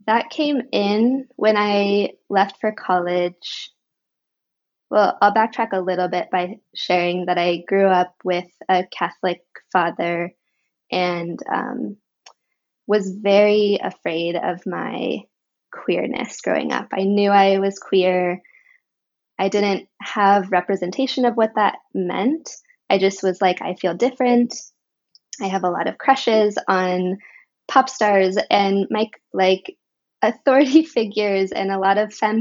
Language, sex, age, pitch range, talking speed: English, female, 20-39, 180-220 Hz, 135 wpm